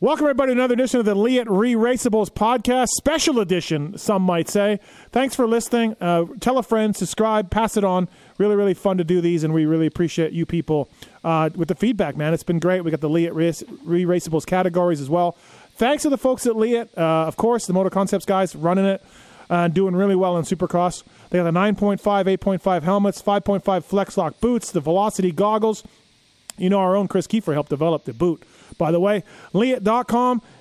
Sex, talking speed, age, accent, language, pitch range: male, 205 wpm, 30-49, American, English, 170-220 Hz